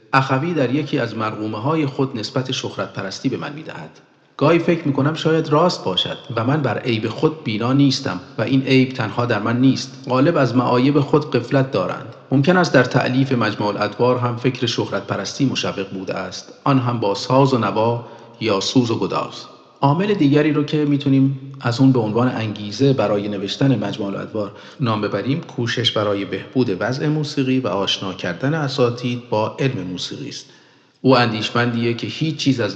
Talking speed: 180 wpm